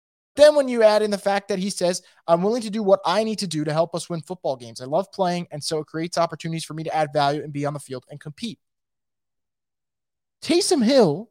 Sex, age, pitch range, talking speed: male, 20-39, 170-225 Hz, 250 wpm